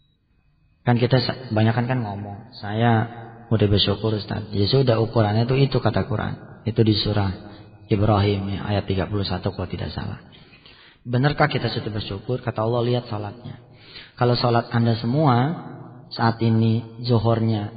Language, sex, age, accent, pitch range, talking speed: Indonesian, male, 30-49, native, 110-150 Hz, 130 wpm